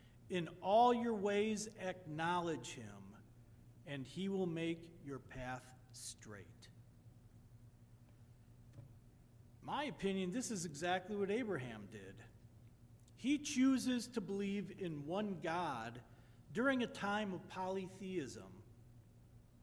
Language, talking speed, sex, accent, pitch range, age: English, 100 wpm, male, American, 115-190 Hz, 50-69